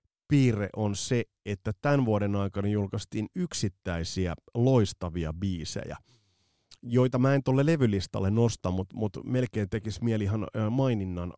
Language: Finnish